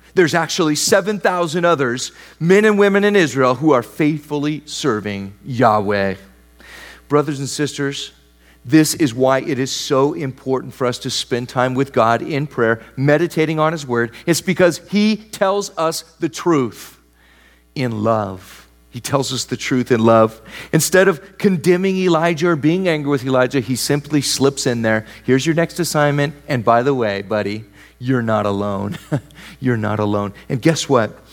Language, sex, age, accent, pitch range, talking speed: English, male, 40-59, American, 125-180 Hz, 165 wpm